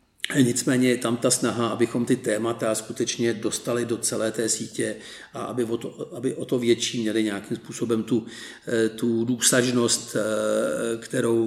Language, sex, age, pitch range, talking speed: Czech, male, 50-69, 115-125 Hz, 150 wpm